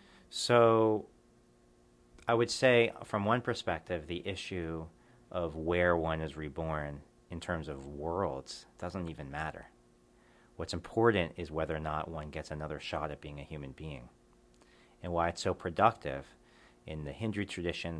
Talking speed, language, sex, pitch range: 150 wpm, English, male, 70-85 Hz